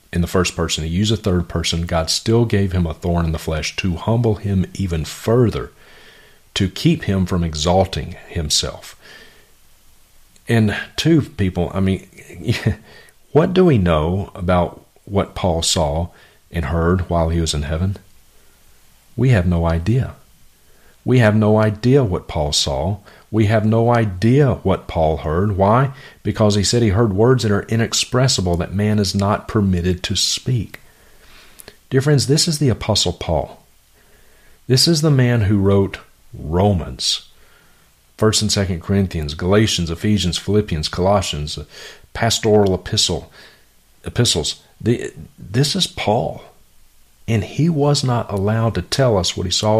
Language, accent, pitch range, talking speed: English, American, 85-115 Hz, 150 wpm